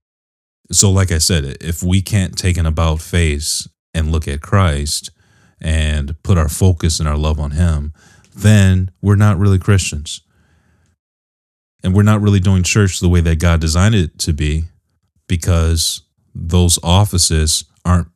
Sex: male